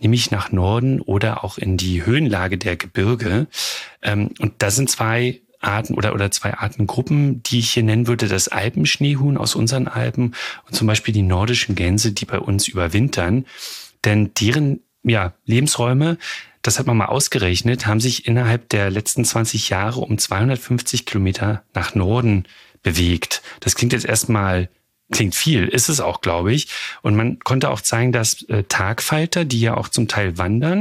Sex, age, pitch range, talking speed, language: male, 30-49, 105-125 Hz, 170 wpm, German